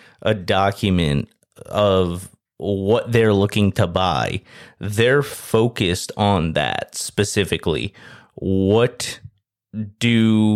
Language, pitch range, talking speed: English, 100-115 Hz, 85 wpm